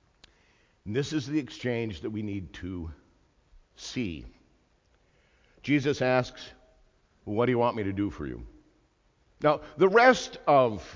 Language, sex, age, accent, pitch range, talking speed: English, male, 50-69, American, 105-145 Hz, 135 wpm